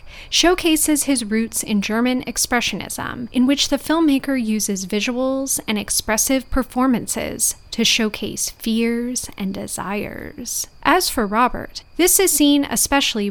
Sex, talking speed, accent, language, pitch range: female, 120 wpm, American, English, 215-280 Hz